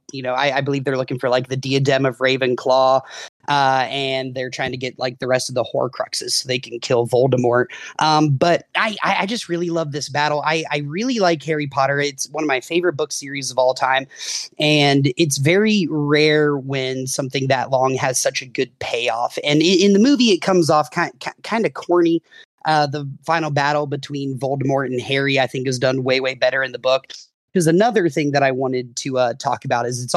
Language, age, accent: English, 30-49, American